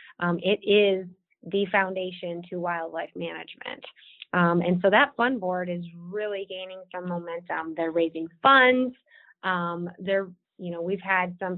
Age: 20-39